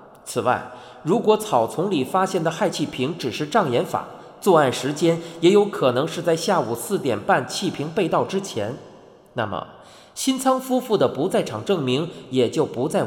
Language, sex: Chinese, male